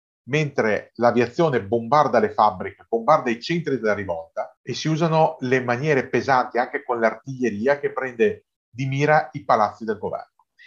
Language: Italian